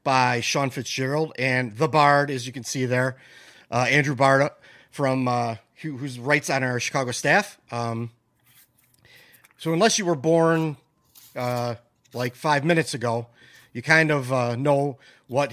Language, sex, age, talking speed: English, male, 30-49, 155 wpm